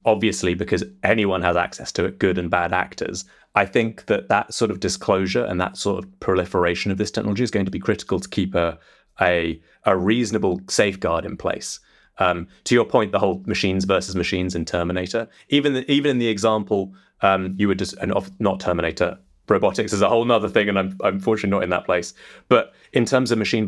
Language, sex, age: English, male, 30-49